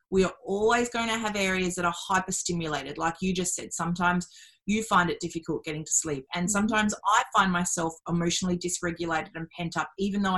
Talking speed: 195 wpm